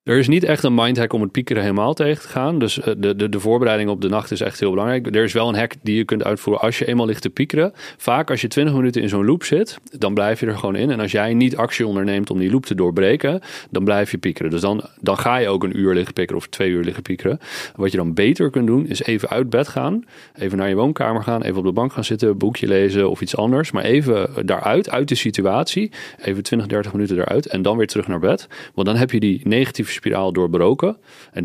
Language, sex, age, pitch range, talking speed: Dutch, male, 40-59, 95-115 Hz, 265 wpm